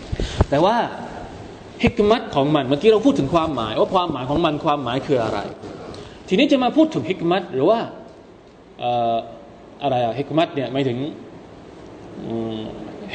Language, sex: Thai, male